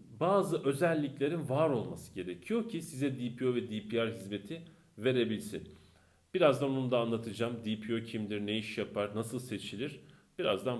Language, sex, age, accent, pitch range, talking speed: Turkish, male, 40-59, native, 105-145 Hz, 135 wpm